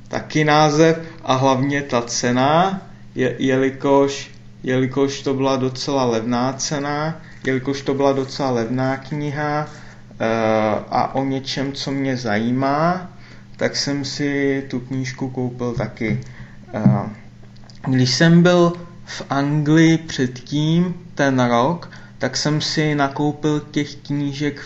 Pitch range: 125-150 Hz